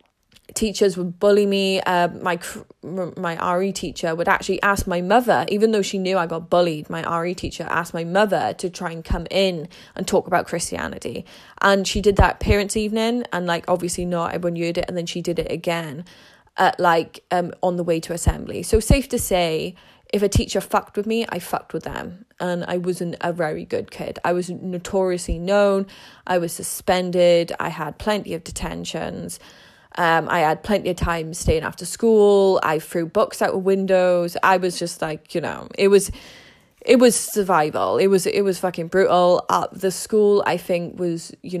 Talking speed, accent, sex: 195 wpm, British, female